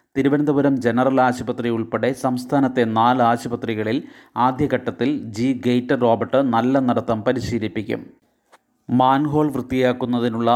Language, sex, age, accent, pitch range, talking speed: Malayalam, male, 30-49, native, 120-130 Hz, 90 wpm